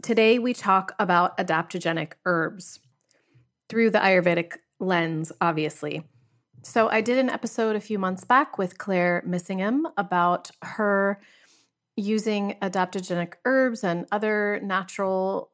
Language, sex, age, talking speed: English, female, 30-49, 120 wpm